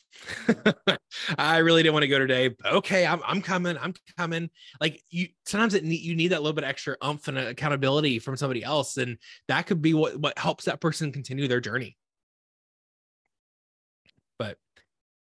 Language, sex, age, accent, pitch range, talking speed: English, male, 20-39, American, 120-160 Hz, 180 wpm